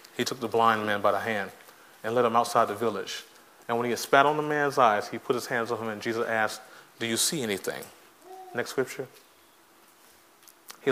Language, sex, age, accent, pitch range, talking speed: English, male, 30-49, American, 110-125 Hz, 215 wpm